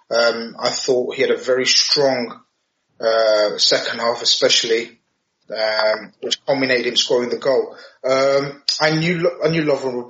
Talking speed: 155 wpm